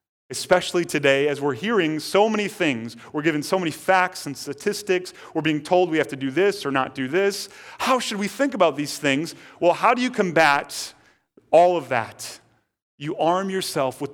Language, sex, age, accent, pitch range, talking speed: English, male, 40-59, American, 140-180 Hz, 195 wpm